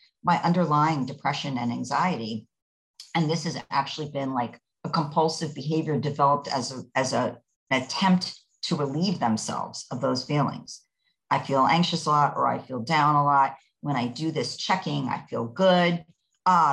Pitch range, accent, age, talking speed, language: 135-165 Hz, American, 50-69, 170 wpm, English